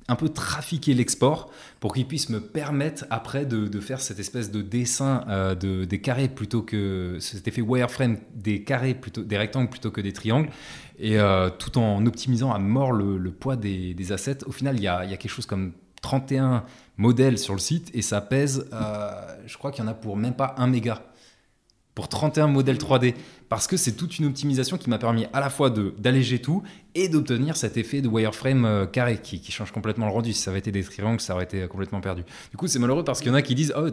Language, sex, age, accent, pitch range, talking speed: French, male, 20-39, French, 100-130 Hz, 235 wpm